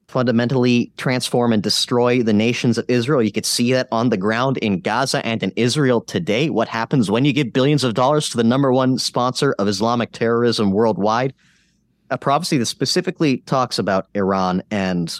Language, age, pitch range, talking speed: English, 30-49, 100-135 Hz, 180 wpm